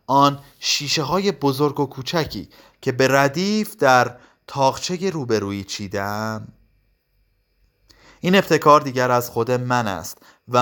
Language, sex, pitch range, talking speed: Persian, male, 105-145 Hz, 120 wpm